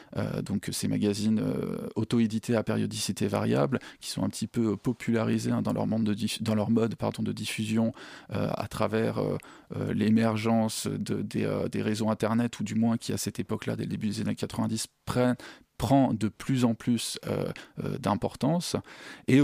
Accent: French